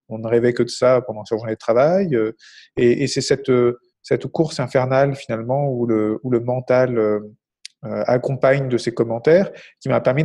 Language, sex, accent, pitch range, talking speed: French, male, French, 115-150 Hz, 180 wpm